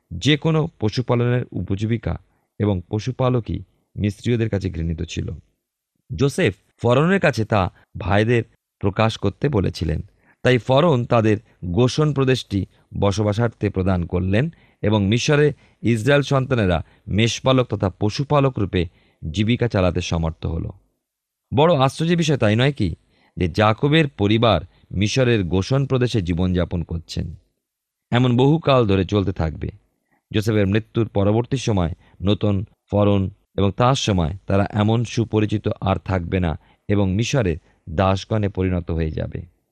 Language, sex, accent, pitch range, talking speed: Bengali, male, native, 95-120 Hz, 120 wpm